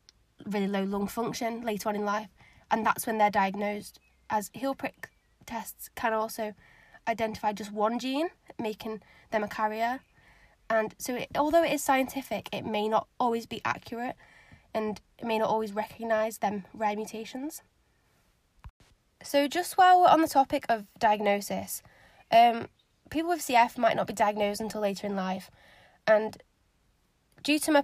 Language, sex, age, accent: English, female, 10-29, British